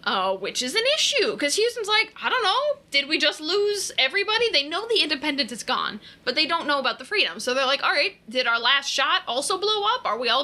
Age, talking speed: 20-39, 255 wpm